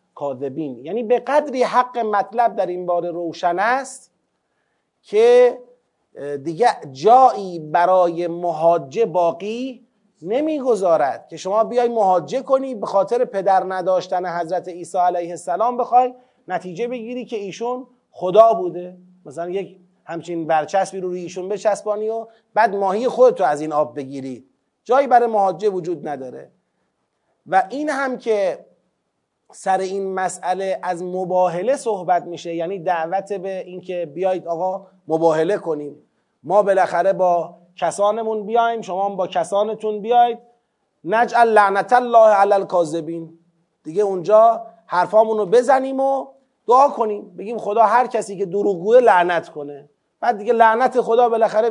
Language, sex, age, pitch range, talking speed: Persian, male, 30-49, 175-235 Hz, 130 wpm